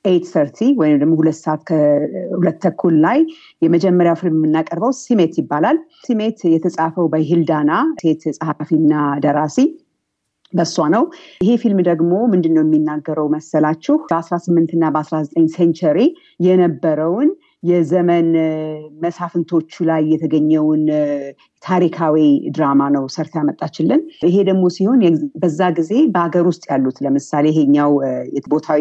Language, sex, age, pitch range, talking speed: Amharic, female, 50-69, 150-190 Hz, 115 wpm